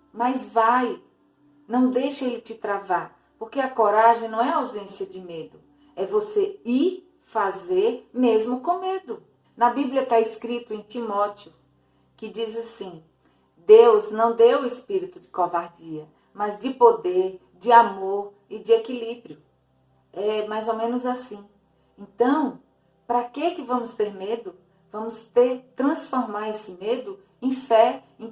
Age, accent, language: 40-59, Brazilian, Portuguese